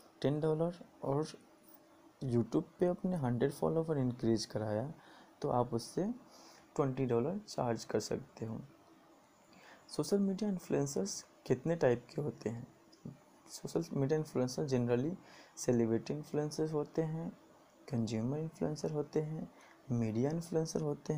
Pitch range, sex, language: 120-160 Hz, male, Hindi